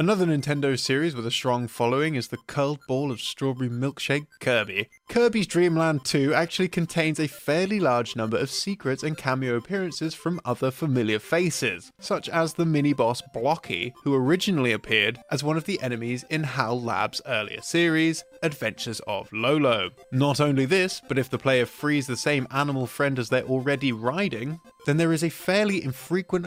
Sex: male